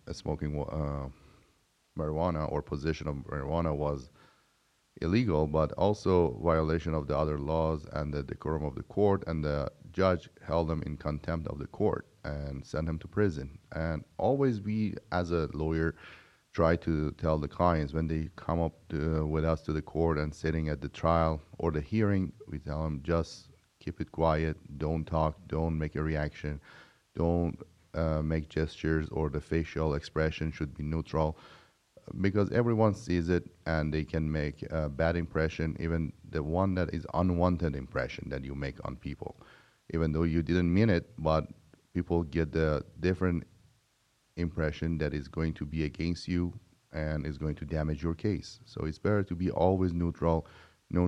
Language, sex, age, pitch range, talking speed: English, male, 30-49, 75-85 Hz, 175 wpm